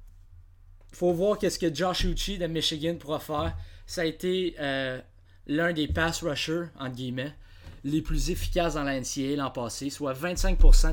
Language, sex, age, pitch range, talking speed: French, male, 20-39, 110-165 Hz, 170 wpm